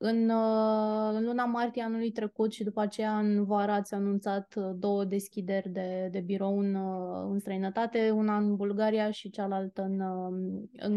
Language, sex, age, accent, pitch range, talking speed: Romanian, female, 20-39, native, 195-220 Hz, 155 wpm